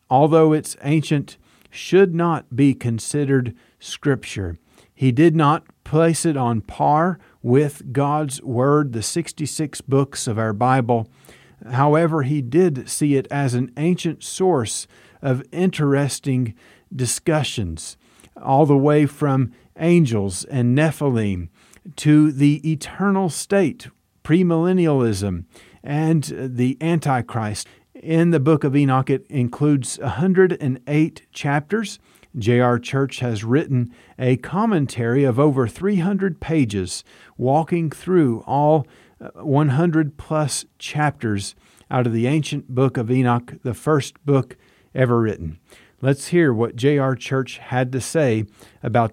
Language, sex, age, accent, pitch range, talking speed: English, male, 40-59, American, 120-155 Hz, 120 wpm